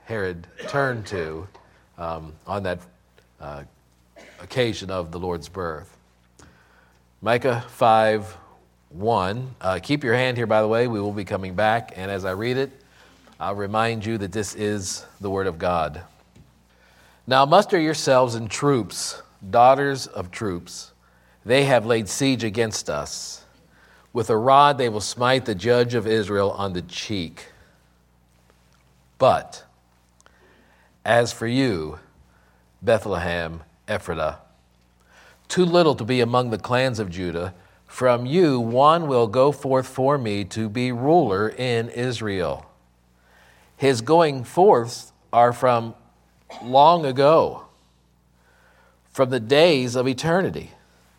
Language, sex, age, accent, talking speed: English, male, 50-69, American, 130 wpm